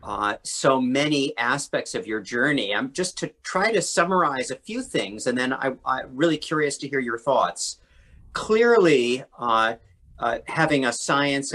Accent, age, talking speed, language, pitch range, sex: American, 40-59, 165 wpm, English, 120-155 Hz, male